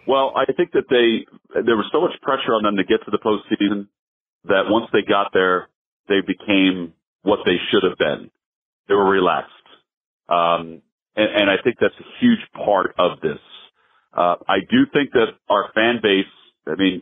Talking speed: 185 wpm